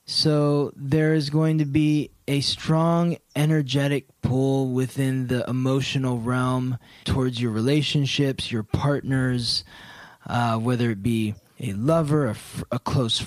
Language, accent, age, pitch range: English, American, 20-39, 125-150 Hz